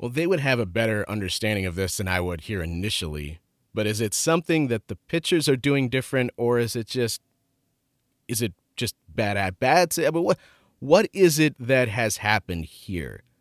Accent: American